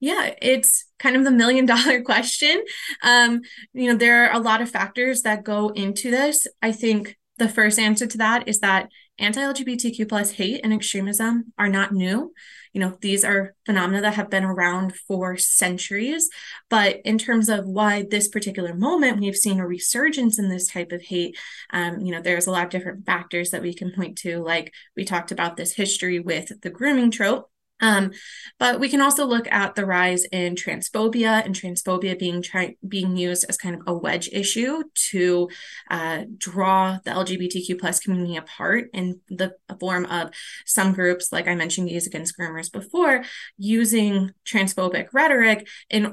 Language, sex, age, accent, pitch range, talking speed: English, female, 20-39, American, 180-225 Hz, 180 wpm